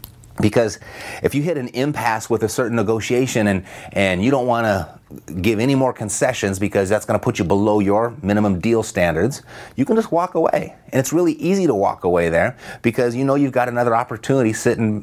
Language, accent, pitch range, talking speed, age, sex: English, American, 105-130 Hz, 200 wpm, 30-49, male